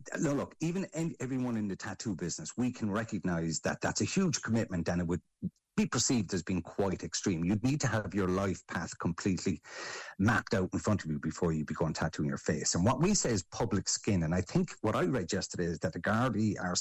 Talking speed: 230 wpm